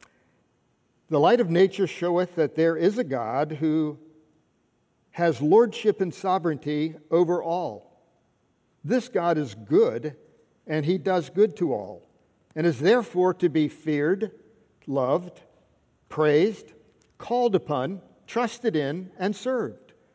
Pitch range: 145-185 Hz